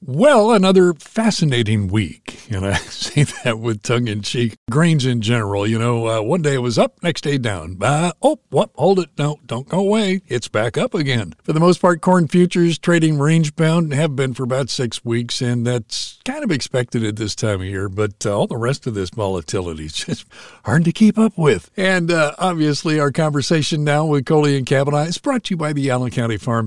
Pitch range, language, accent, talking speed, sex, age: 115-170 Hz, English, American, 215 wpm, male, 60-79